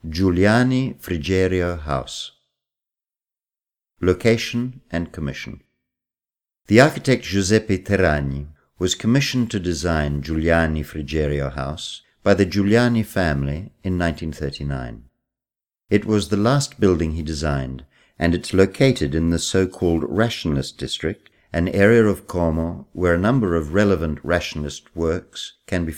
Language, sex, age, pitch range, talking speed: Italian, male, 50-69, 75-105 Hz, 120 wpm